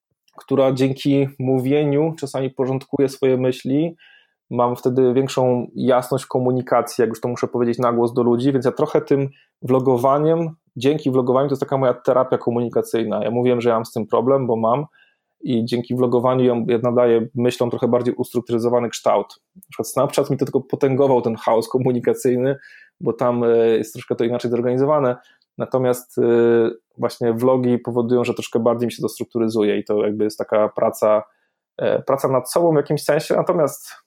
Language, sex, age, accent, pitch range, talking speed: Polish, male, 20-39, native, 120-135 Hz, 165 wpm